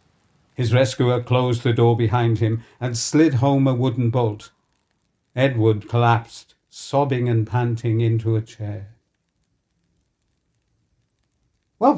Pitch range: 115-170 Hz